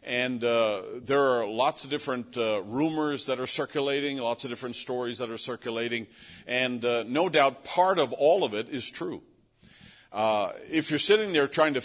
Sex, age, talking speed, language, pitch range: male, 50-69, 185 wpm, English, 115-135 Hz